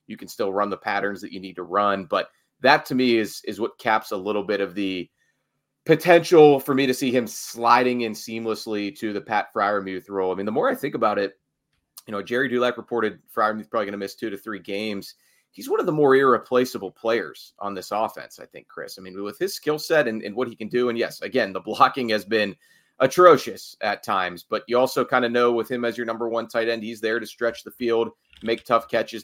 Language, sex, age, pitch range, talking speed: English, male, 30-49, 105-130 Hz, 240 wpm